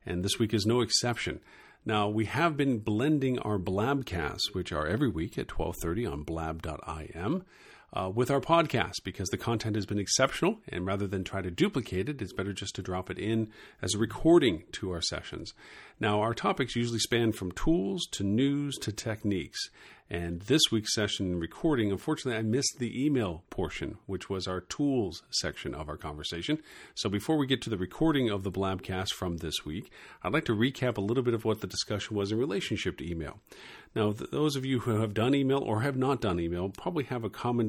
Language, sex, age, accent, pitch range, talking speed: English, male, 50-69, American, 90-120 Hz, 205 wpm